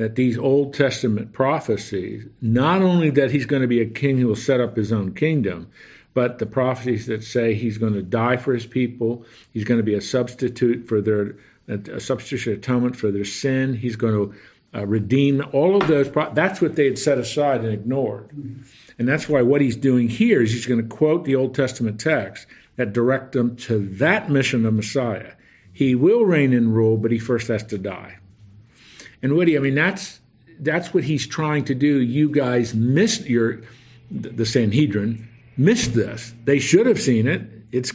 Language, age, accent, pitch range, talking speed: English, 50-69, American, 110-135 Hz, 195 wpm